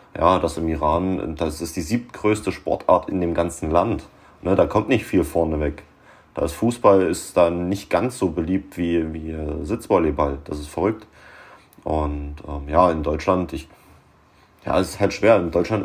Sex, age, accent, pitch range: male, 30-49, German, 85-100 Hz